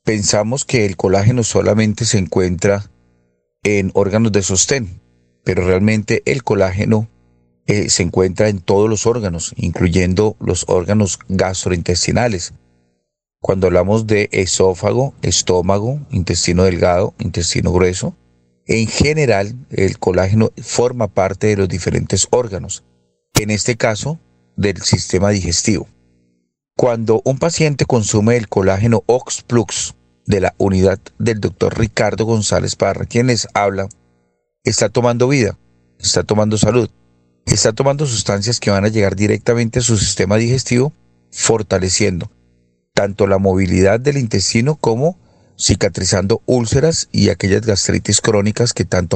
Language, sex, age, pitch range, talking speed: Spanish, male, 40-59, 90-115 Hz, 125 wpm